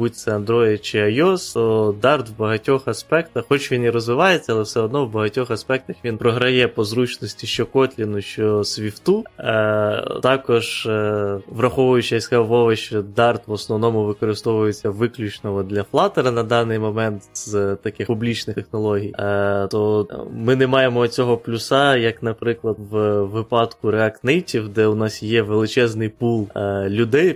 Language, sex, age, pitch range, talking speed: Ukrainian, male, 20-39, 105-120 Hz, 145 wpm